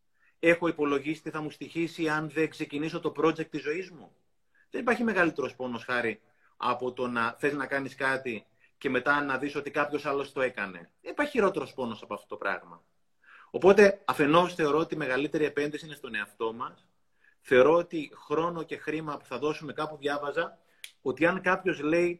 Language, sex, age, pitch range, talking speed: Greek, male, 30-49, 135-175 Hz, 185 wpm